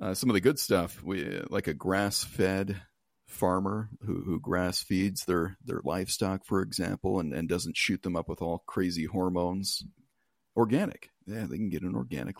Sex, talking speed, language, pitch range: male, 175 wpm, English, 90-115 Hz